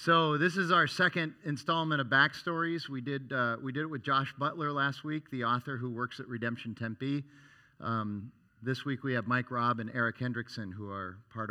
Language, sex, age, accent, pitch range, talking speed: English, male, 50-69, American, 105-125 Hz, 205 wpm